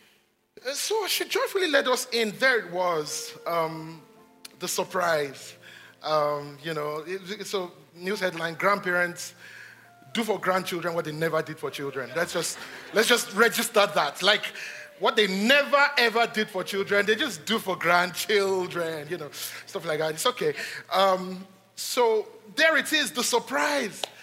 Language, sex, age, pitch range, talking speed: English, male, 30-49, 155-205 Hz, 150 wpm